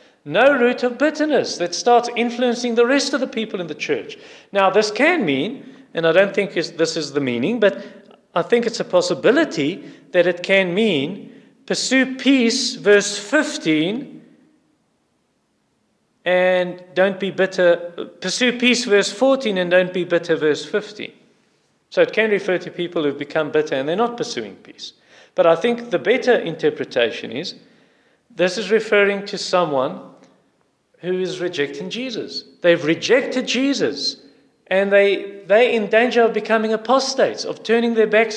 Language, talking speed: English, 155 wpm